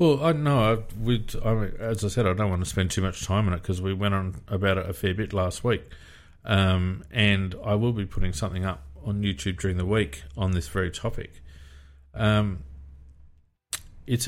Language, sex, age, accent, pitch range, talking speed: English, male, 40-59, Australian, 95-115 Hz, 205 wpm